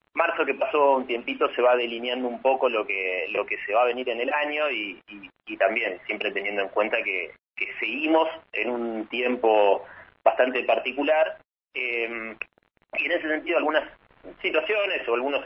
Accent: Argentinian